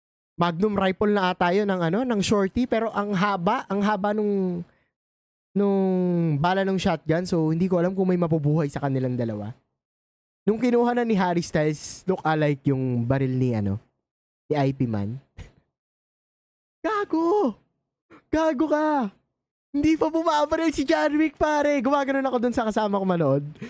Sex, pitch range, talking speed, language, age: male, 140-220 Hz, 145 wpm, Filipino, 20-39